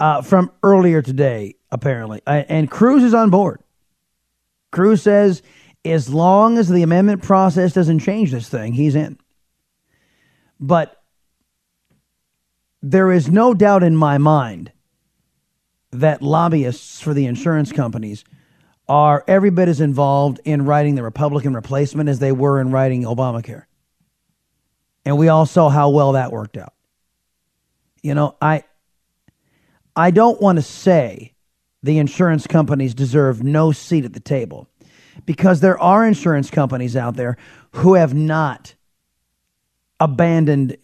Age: 30-49